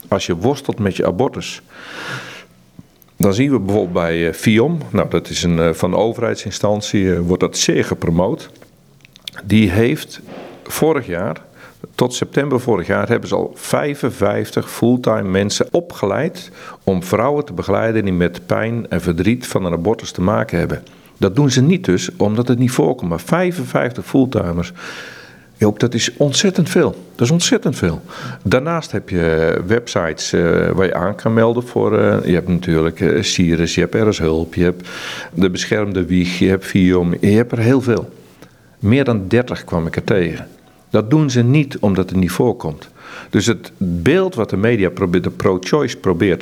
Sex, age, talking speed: male, 50-69, 170 wpm